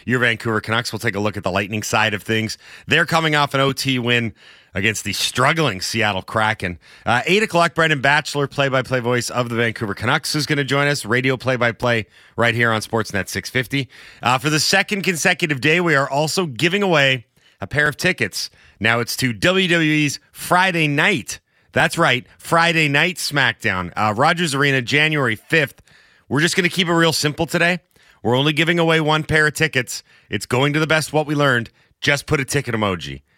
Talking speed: 195 wpm